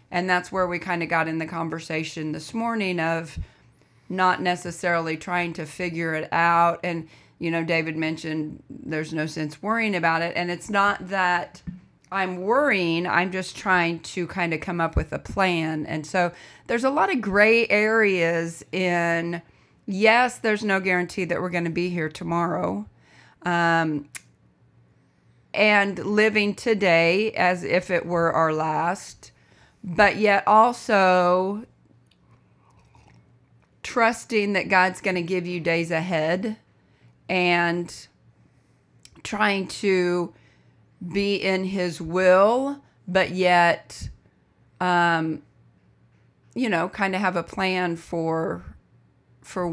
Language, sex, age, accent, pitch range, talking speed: English, female, 40-59, American, 165-190 Hz, 130 wpm